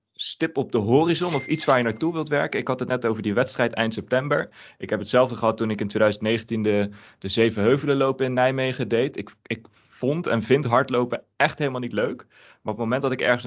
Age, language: 20-39, Dutch